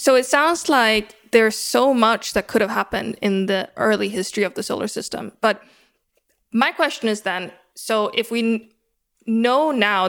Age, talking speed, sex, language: 20-39, 170 wpm, female, English